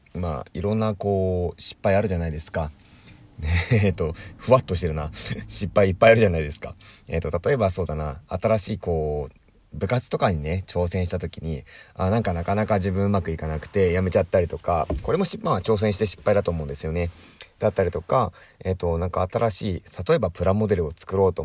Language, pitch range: Japanese, 85-110 Hz